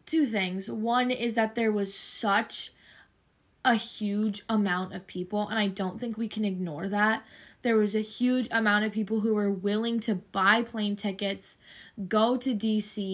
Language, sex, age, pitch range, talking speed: English, female, 10-29, 195-225 Hz, 175 wpm